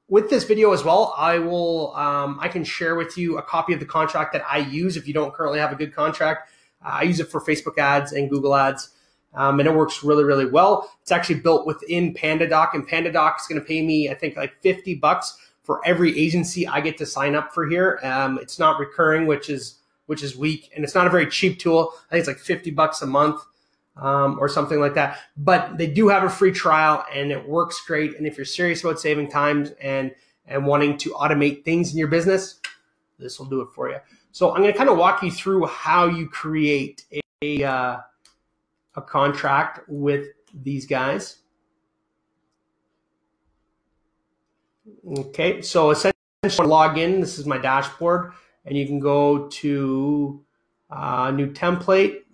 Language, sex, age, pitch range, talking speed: English, male, 30-49, 140-170 Hz, 200 wpm